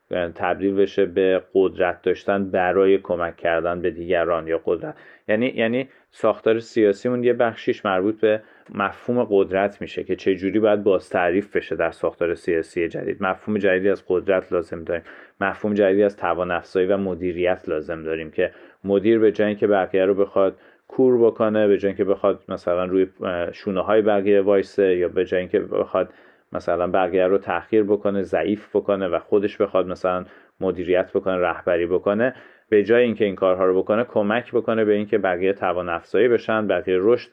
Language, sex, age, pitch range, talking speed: Persian, male, 30-49, 95-110 Hz, 165 wpm